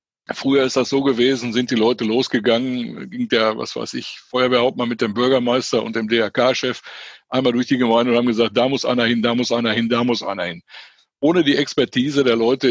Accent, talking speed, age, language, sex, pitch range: German, 210 wpm, 60-79, German, male, 120-140 Hz